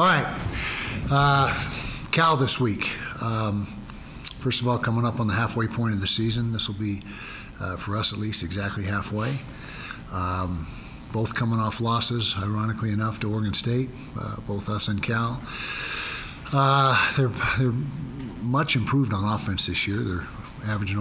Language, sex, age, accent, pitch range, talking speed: English, male, 50-69, American, 95-120 Hz, 155 wpm